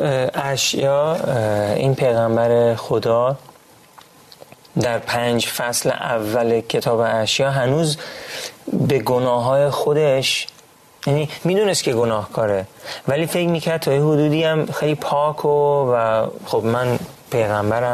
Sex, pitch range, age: male, 115-140 Hz, 30-49